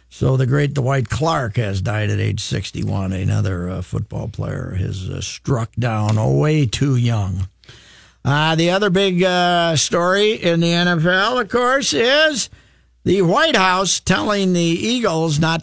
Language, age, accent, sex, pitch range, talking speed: English, 50-69, American, male, 120-170 Hz, 155 wpm